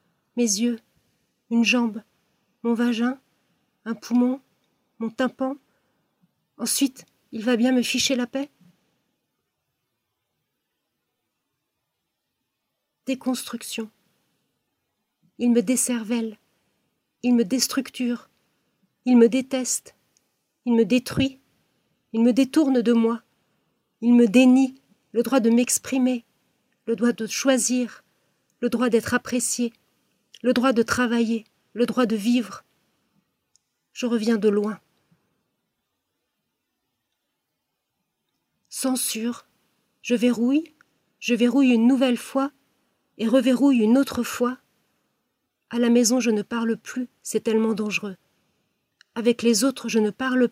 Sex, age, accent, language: female, 40-59, French, French